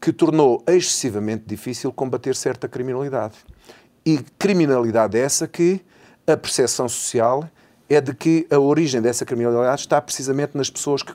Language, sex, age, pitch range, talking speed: Portuguese, male, 40-59, 115-155 Hz, 140 wpm